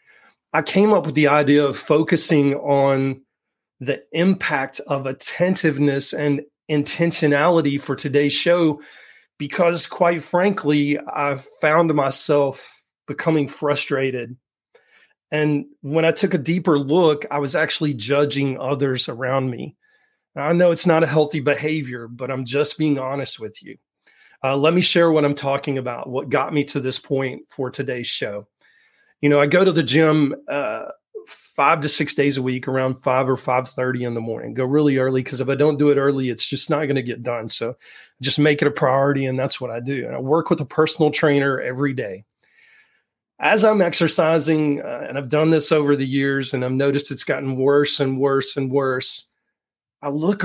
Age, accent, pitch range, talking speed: 30-49, American, 135-160 Hz, 180 wpm